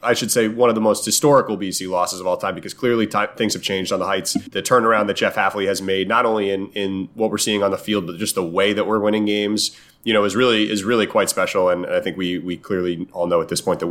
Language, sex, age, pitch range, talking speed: English, male, 30-49, 95-110 Hz, 295 wpm